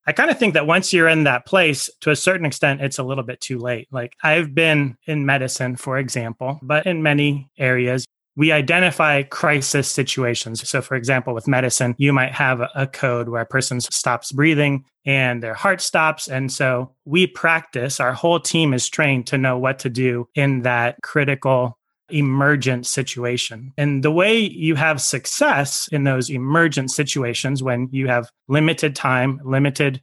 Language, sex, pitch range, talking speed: English, male, 125-150 Hz, 180 wpm